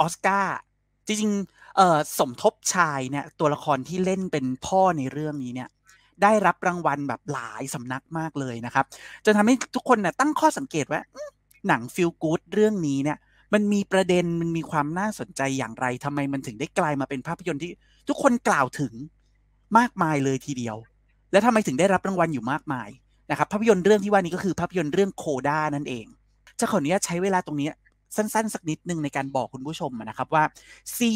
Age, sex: 30-49, male